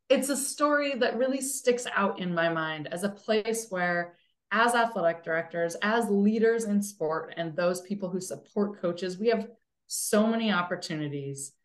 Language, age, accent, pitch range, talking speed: English, 20-39, American, 170-230 Hz, 165 wpm